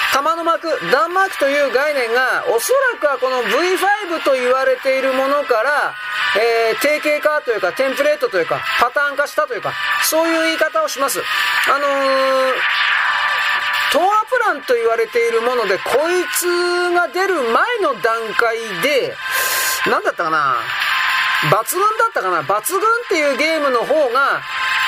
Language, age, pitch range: Japanese, 40-59, 260-360 Hz